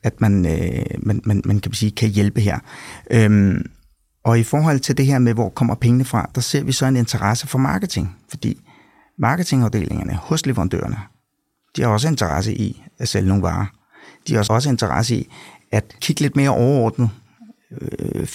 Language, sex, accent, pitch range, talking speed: Danish, male, native, 105-130 Hz, 175 wpm